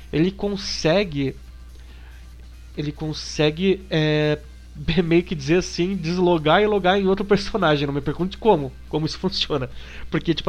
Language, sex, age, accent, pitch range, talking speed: Portuguese, male, 20-39, Brazilian, 140-175 Hz, 135 wpm